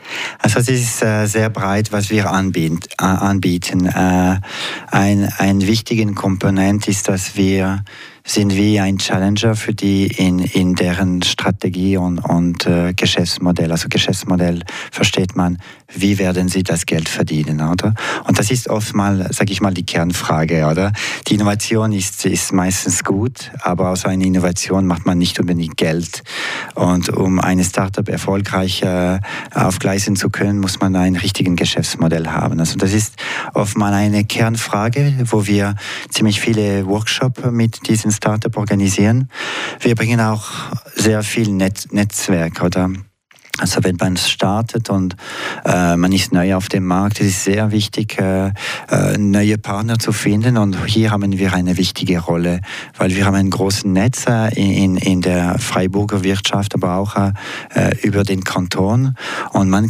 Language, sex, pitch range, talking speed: German, male, 90-105 Hz, 150 wpm